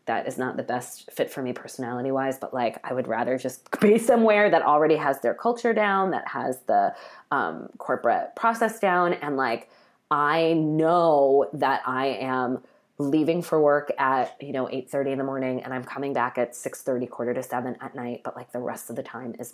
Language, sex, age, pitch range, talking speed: English, female, 20-39, 135-175 Hz, 205 wpm